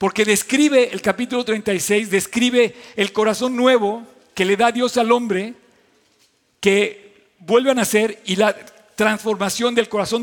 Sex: male